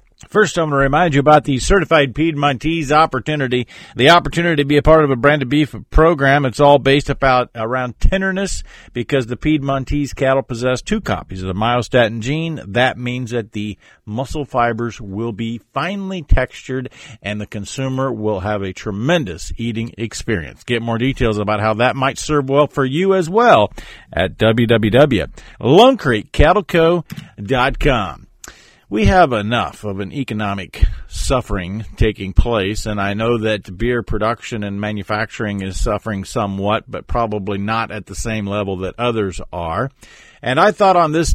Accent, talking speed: American, 155 wpm